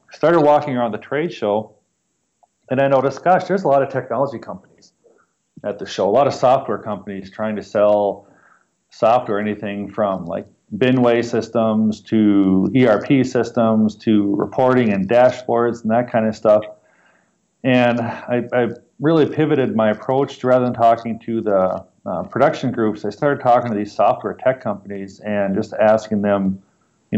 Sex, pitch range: male, 105-120 Hz